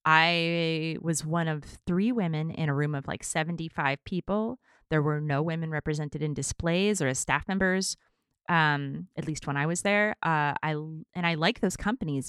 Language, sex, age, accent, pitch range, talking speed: English, female, 20-39, American, 145-185 Hz, 185 wpm